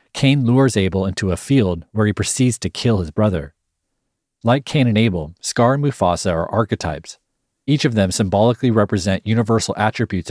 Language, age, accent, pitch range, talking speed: English, 40-59, American, 95-120 Hz, 170 wpm